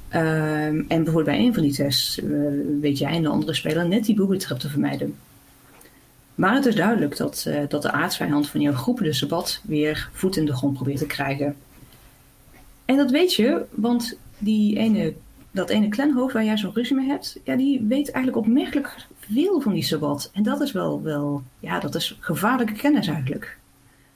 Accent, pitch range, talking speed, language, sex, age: Dutch, 150-220 Hz, 195 wpm, Dutch, female, 30-49